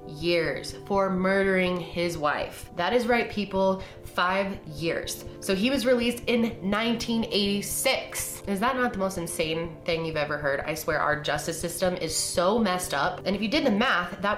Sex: female